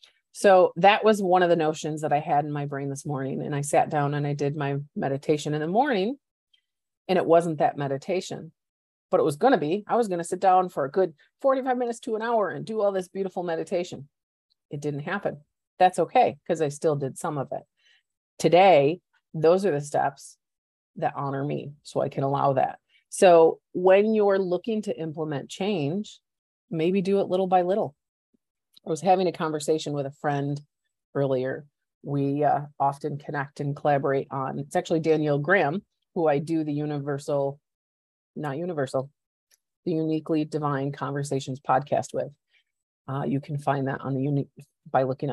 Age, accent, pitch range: 30-49, American, 140-185 Hz